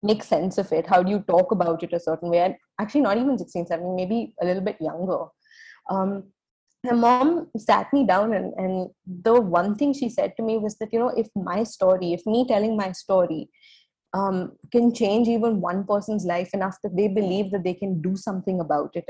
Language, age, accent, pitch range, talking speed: English, 20-39, Indian, 180-230 Hz, 215 wpm